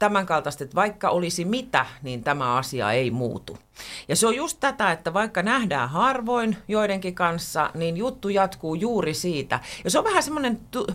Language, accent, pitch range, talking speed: Finnish, native, 135-195 Hz, 175 wpm